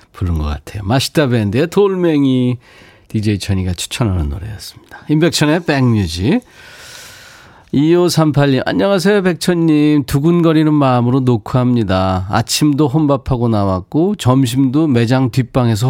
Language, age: Korean, 40-59